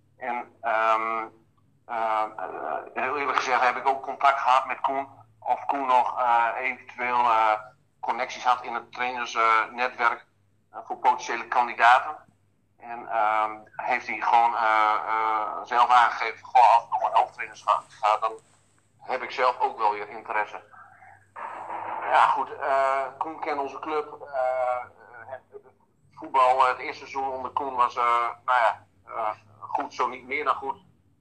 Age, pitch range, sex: 50-69, 110-135 Hz, male